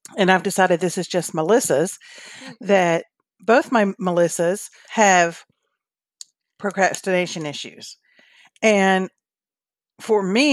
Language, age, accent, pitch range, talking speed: English, 50-69, American, 165-205 Hz, 95 wpm